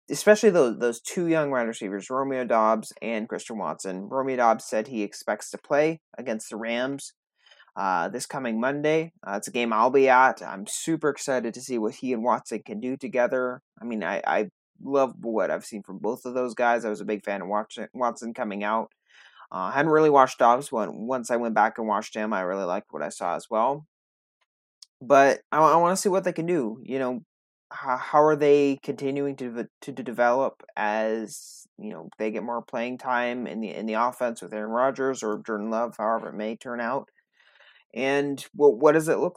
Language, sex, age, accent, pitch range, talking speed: English, male, 20-39, American, 110-140 Hz, 215 wpm